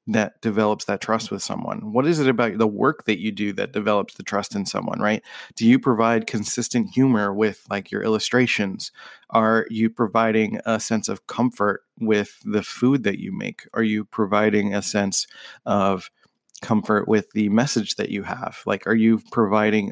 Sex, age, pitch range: male, 30-49, 105-115 Hz